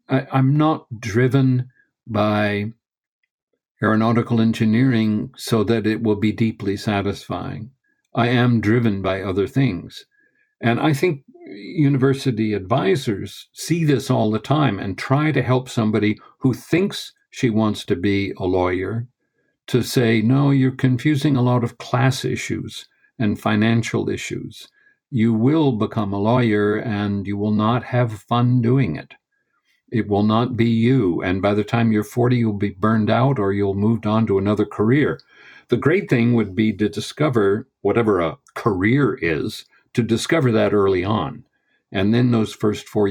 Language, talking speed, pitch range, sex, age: English, 155 wpm, 105-130 Hz, male, 60-79